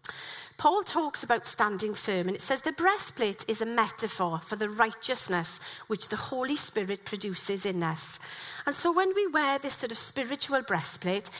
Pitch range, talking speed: 200-290 Hz, 175 wpm